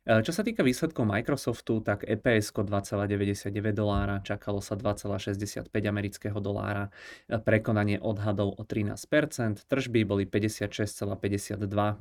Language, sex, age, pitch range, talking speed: Czech, male, 20-39, 100-110 Hz, 105 wpm